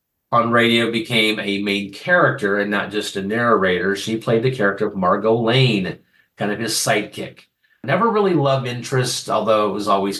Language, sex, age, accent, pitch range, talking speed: English, male, 40-59, American, 110-145 Hz, 175 wpm